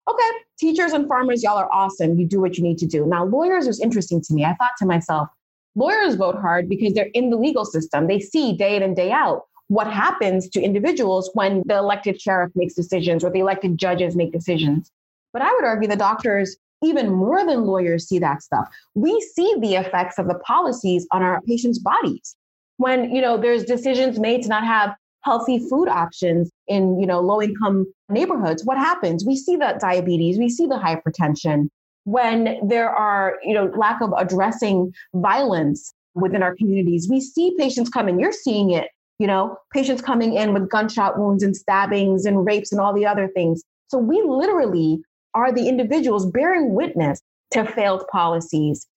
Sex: female